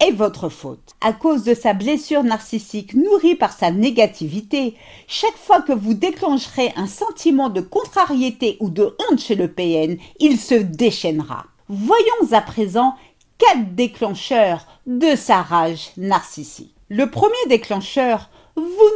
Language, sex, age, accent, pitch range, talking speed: French, female, 50-69, French, 205-295 Hz, 140 wpm